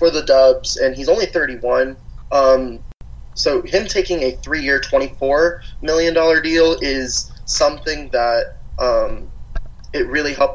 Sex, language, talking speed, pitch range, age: male, English, 135 wpm, 125-170 Hz, 20-39